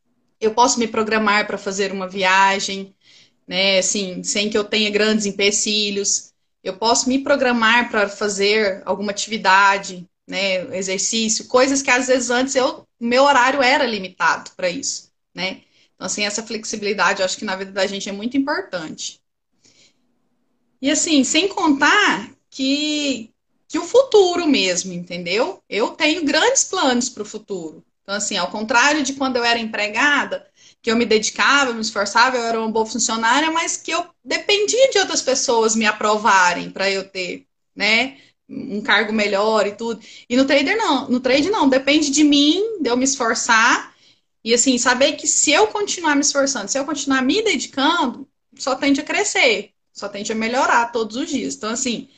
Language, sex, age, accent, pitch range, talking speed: Portuguese, female, 30-49, Brazilian, 205-280 Hz, 170 wpm